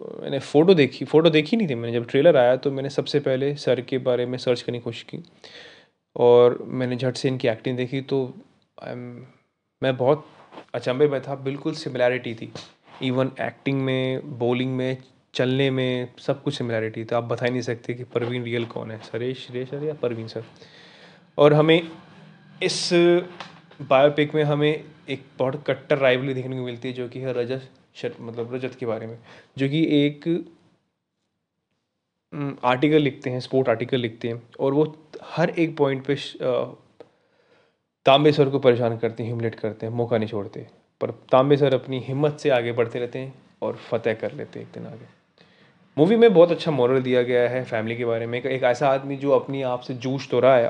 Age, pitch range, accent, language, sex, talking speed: 20-39, 120-145 Hz, native, Hindi, male, 185 wpm